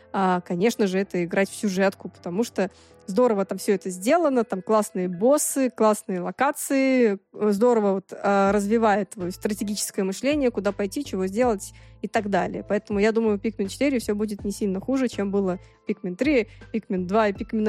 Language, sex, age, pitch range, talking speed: Russian, female, 20-39, 195-235 Hz, 175 wpm